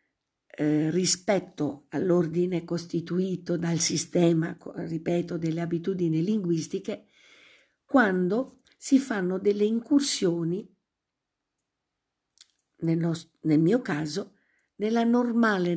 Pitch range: 165-195 Hz